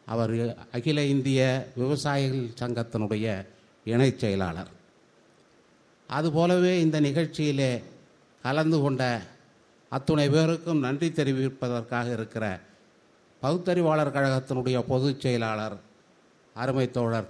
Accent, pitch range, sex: native, 110-135 Hz, male